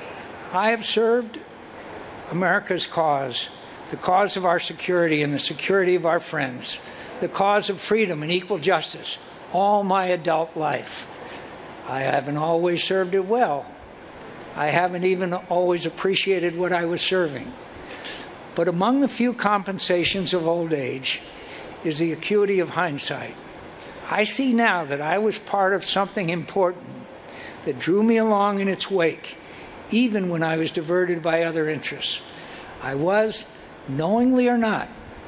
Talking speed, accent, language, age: 145 wpm, American, English, 60-79